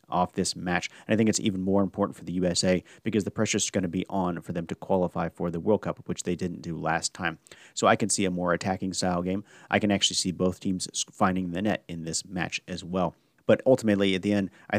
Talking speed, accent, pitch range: 260 wpm, American, 90-105 Hz